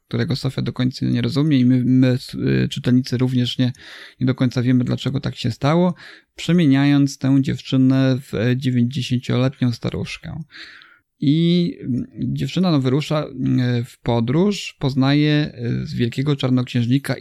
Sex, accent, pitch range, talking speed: male, native, 125-145 Hz, 125 wpm